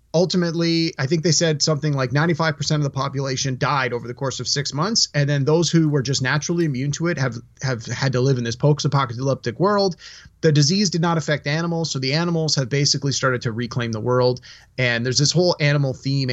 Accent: American